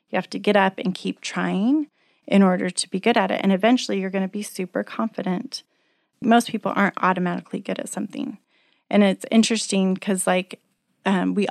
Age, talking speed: 30-49, 195 wpm